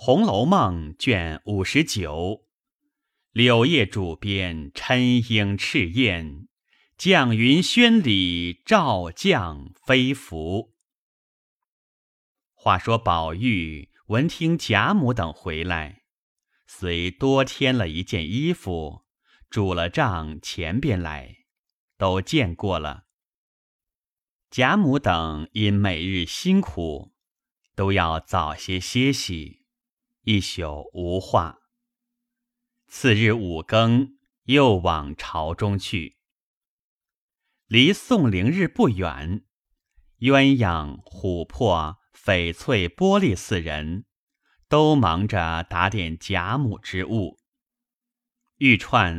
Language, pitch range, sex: Chinese, 85-135 Hz, male